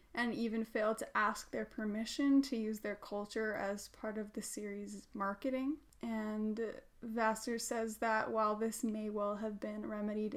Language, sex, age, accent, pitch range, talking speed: English, female, 10-29, American, 215-250 Hz, 160 wpm